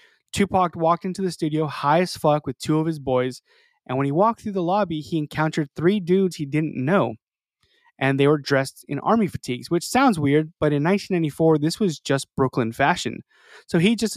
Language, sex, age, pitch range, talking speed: English, male, 20-39, 140-175 Hz, 205 wpm